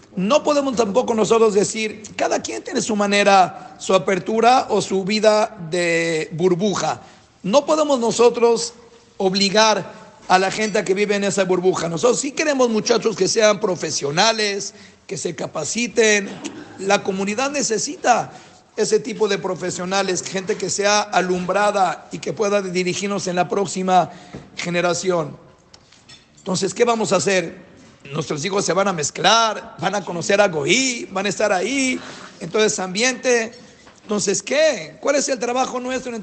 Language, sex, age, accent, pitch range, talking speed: Spanish, male, 50-69, Mexican, 185-230 Hz, 145 wpm